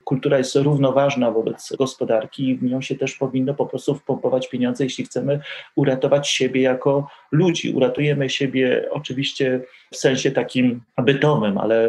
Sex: male